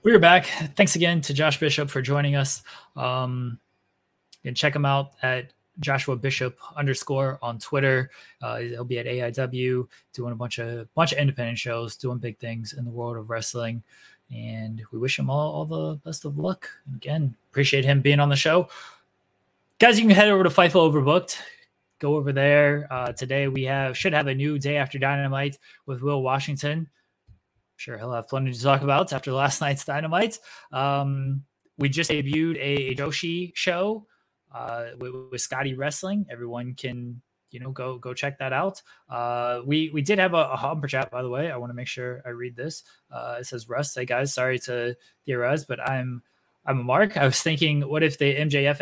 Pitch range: 125-150 Hz